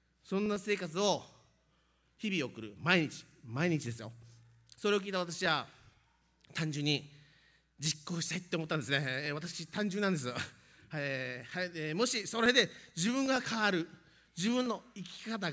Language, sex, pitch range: Japanese, male, 135-195 Hz